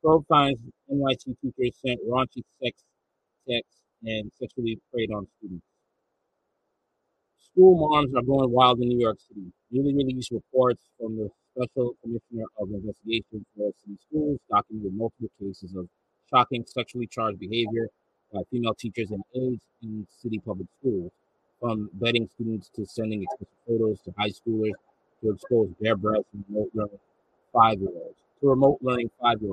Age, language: 40-59, English